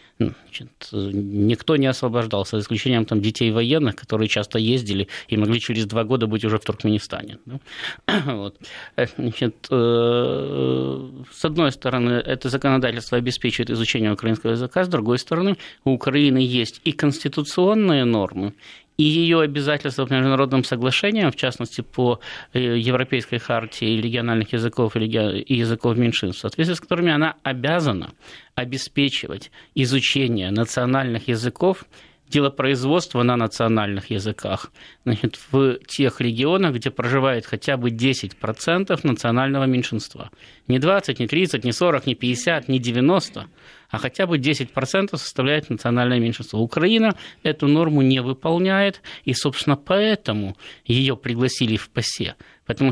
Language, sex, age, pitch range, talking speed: Russian, male, 20-39, 115-150 Hz, 125 wpm